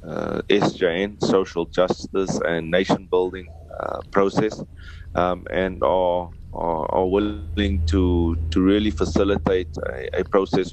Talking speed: 125 wpm